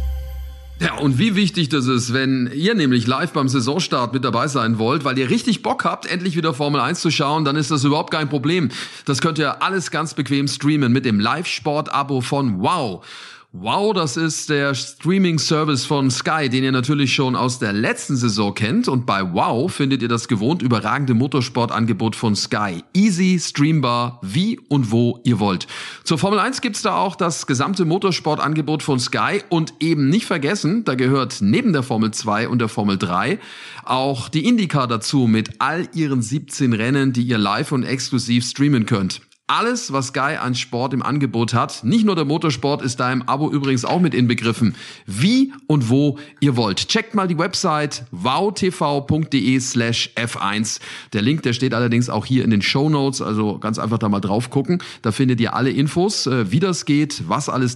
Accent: German